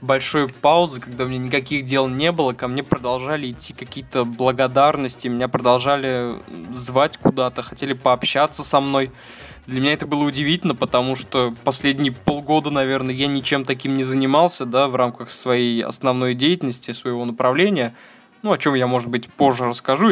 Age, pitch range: 20-39, 125-145 Hz